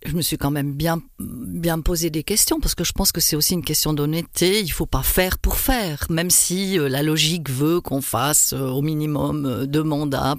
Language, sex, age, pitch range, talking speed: French, female, 50-69, 140-175 Hz, 220 wpm